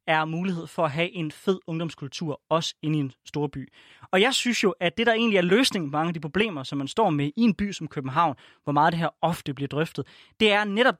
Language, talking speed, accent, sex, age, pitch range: Danish, 250 wpm, native, male, 20-39, 155-200 Hz